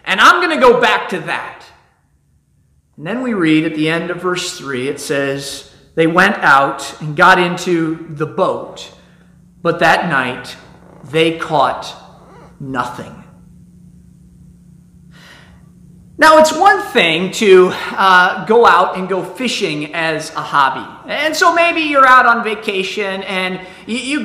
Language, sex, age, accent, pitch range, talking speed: English, male, 40-59, American, 190-275 Hz, 140 wpm